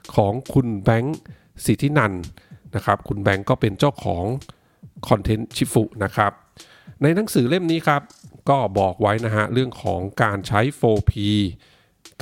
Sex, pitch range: male, 100-135 Hz